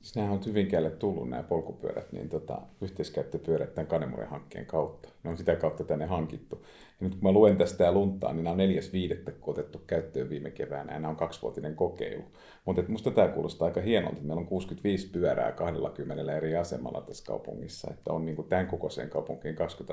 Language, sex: Finnish, male